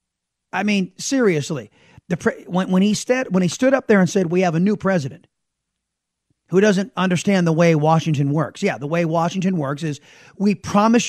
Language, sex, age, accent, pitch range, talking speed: English, male, 30-49, American, 165-220 Hz, 180 wpm